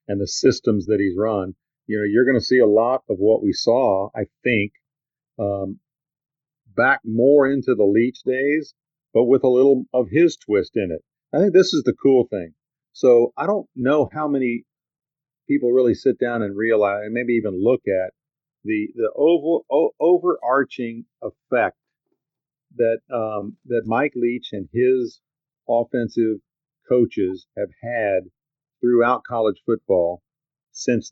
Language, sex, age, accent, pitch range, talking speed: English, male, 50-69, American, 110-145 Hz, 155 wpm